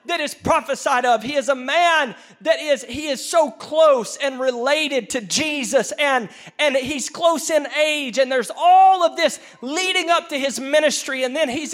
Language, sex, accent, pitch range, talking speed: English, male, American, 255-305 Hz, 190 wpm